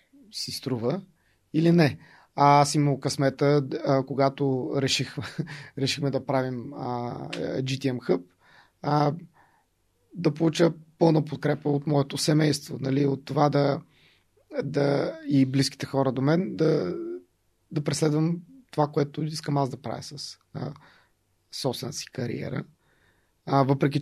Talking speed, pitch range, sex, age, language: 110 wpm, 135-155 Hz, male, 30-49, Bulgarian